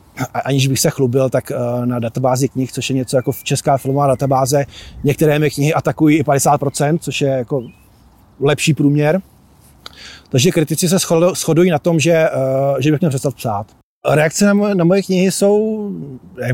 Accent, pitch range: native, 130-160 Hz